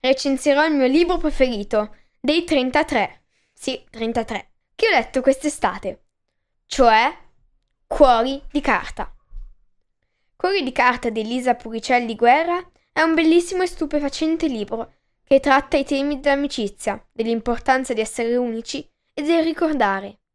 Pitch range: 235-320 Hz